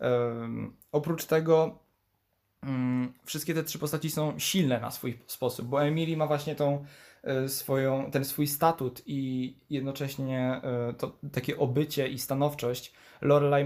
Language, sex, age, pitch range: Polish, male, 20-39, 125-150 Hz